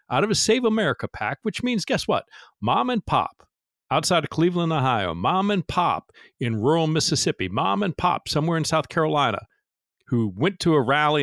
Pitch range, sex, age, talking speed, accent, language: 125-175 Hz, male, 40-59, 185 wpm, American, English